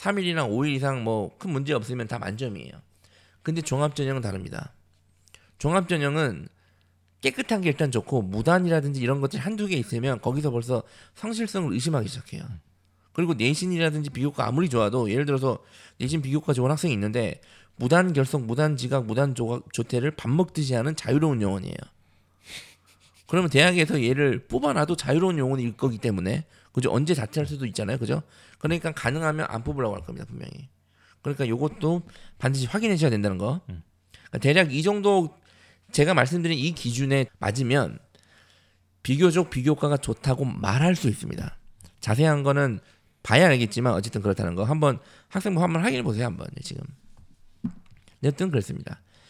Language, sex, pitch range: Korean, male, 110-155 Hz